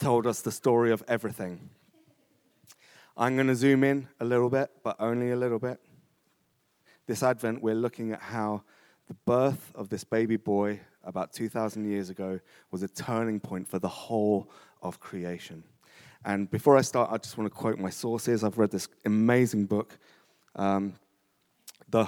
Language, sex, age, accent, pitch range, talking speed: English, male, 30-49, British, 100-125 Hz, 170 wpm